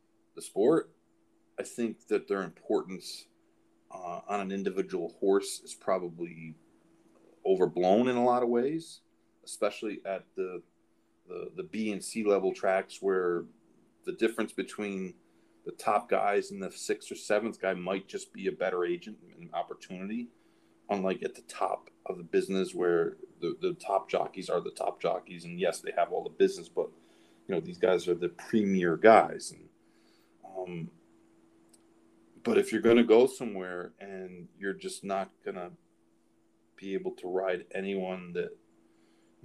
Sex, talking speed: male, 160 wpm